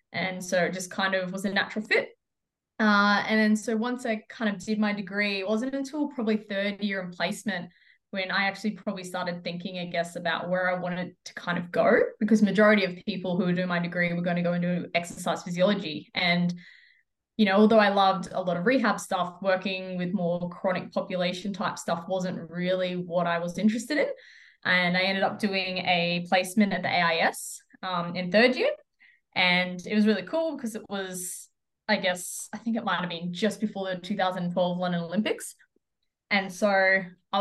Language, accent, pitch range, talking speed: English, Australian, 180-215 Hz, 200 wpm